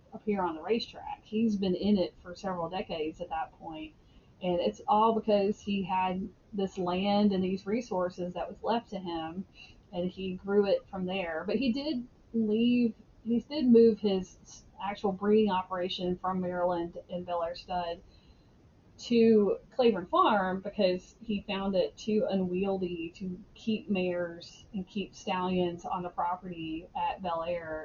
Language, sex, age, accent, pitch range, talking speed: English, female, 30-49, American, 180-215 Hz, 160 wpm